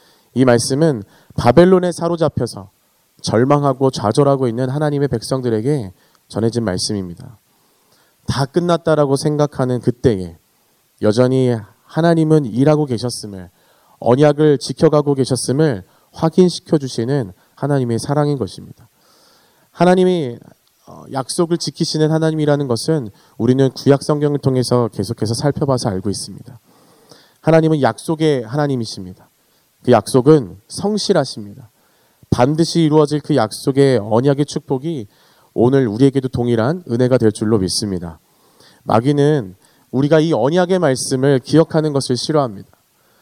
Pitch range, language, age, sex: 120-155 Hz, Korean, 30-49, male